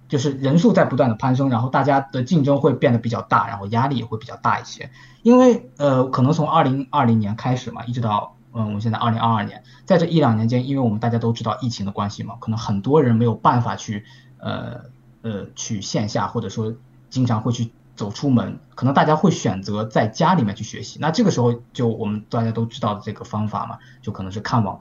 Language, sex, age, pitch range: Japanese, male, 20-39, 115-145 Hz